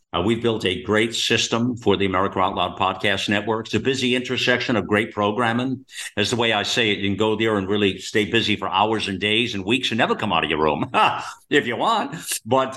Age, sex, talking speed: 50-69, male, 240 wpm